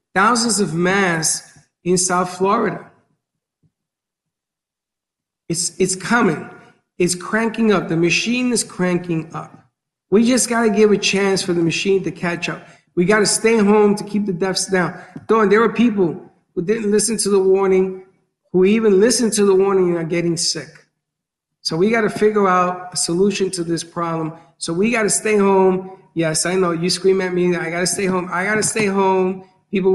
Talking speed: 190 wpm